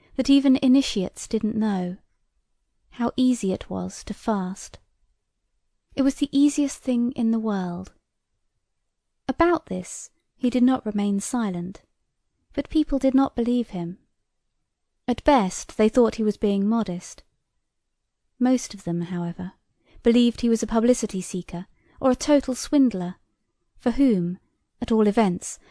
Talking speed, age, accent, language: 135 wpm, 30-49, British, English